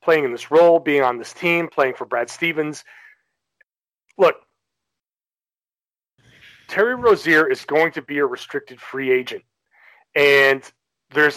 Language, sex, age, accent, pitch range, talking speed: English, male, 40-59, American, 135-195 Hz, 130 wpm